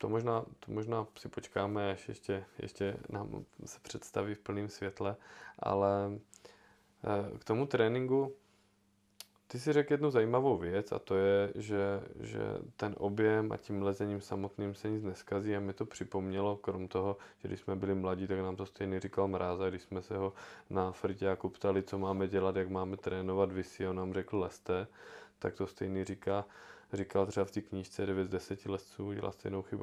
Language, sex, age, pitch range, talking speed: Czech, male, 20-39, 95-105 Hz, 185 wpm